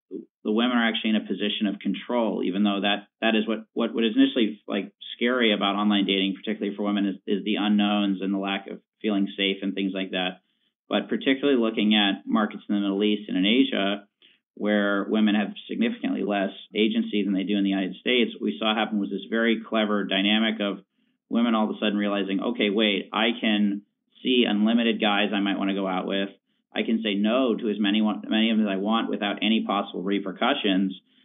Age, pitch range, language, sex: 40-59, 100-110 Hz, English, male